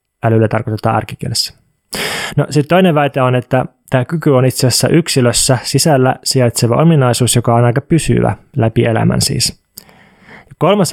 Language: Finnish